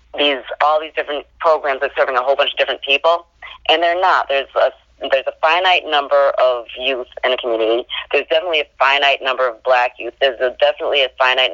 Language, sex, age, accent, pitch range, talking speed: English, female, 30-49, American, 125-150 Hz, 215 wpm